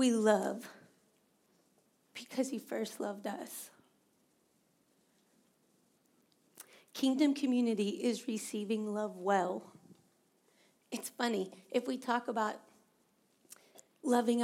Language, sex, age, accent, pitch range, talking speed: English, female, 40-59, American, 200-245 Hz, 85 wpm